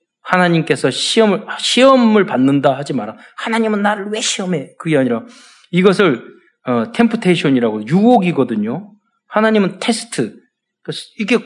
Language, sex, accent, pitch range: Korean, male, native, 150-225 Hz